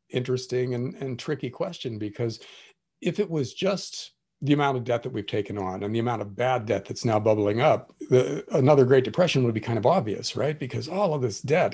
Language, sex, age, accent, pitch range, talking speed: English, male, 50-69, American, 115-145 Hz, 220 wpm